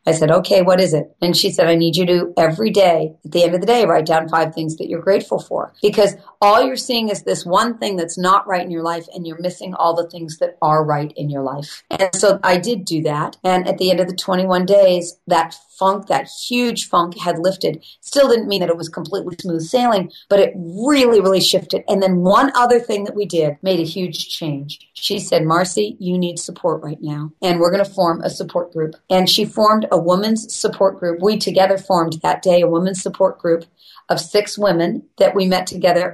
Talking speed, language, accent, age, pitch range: 235 wpm, English, American, 40-59, 165-195 Hz